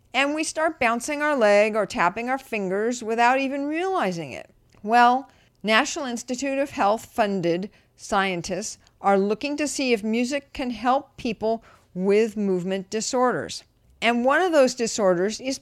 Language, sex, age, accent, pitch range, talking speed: English, female, 50-69, American, 185-255 Hz, 150 wpm